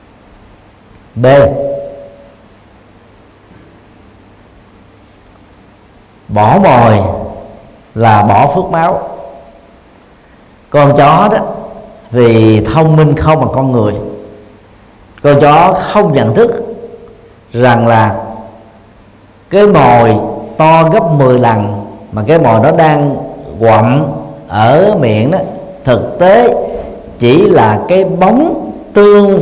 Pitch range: 110-170 Hz